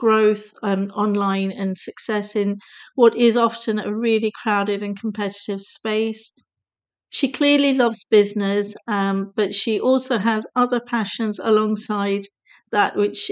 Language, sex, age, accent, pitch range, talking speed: English, female, 40-59, British, 200-230 Hz, 130 wpm